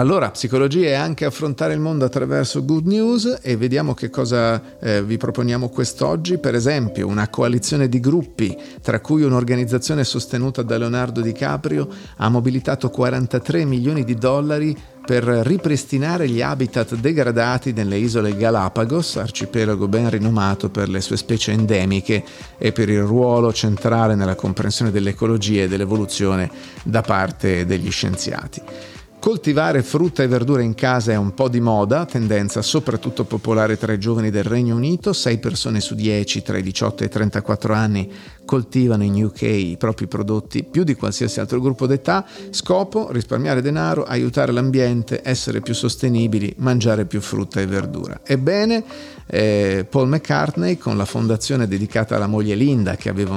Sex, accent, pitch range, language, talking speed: male, native, 105-135 Hz, Italian, 155 wpm